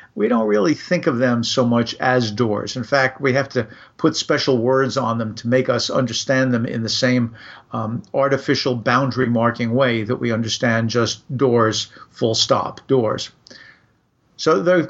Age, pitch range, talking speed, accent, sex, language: 50-69, 120-145 Hz, 175 wpm, American, male, English